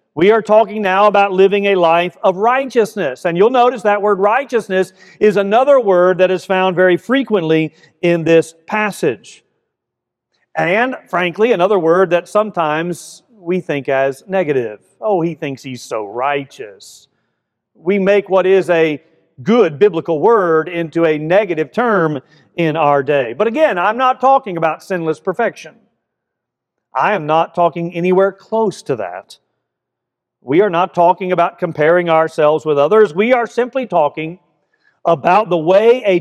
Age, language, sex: 40-59, English, male